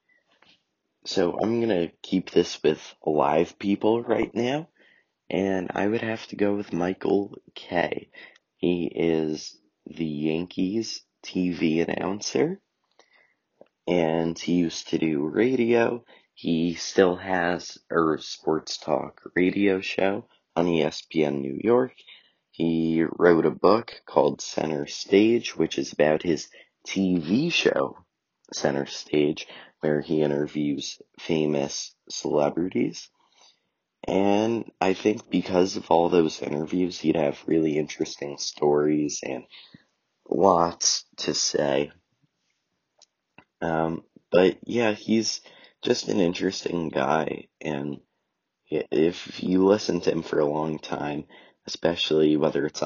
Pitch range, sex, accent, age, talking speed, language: 75-95 Hz, male, American, 30-49, 115 wpm, English